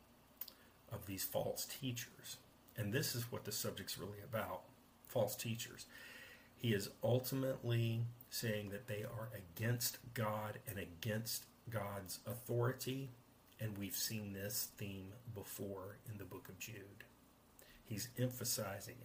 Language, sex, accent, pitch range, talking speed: English, male, American, 105-125 Hz, 125 wpm